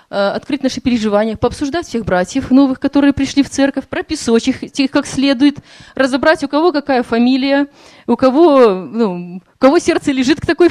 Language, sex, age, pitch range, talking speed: Russian, female, 20-39, 230-285 Hz, 160 wpm